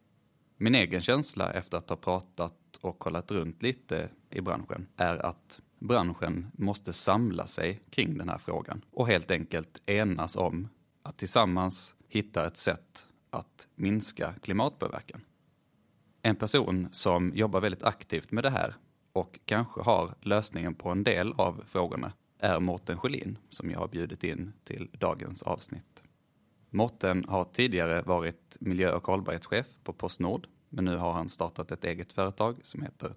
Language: English